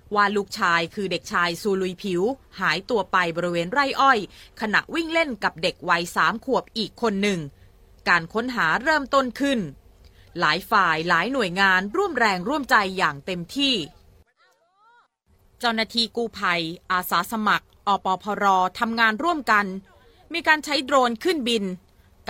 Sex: female